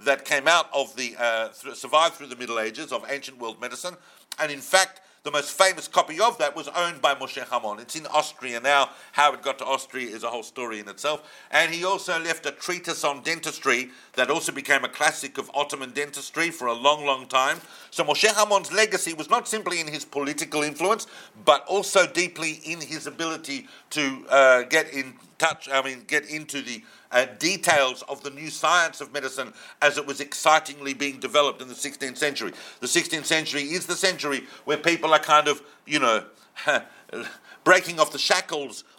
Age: 50-69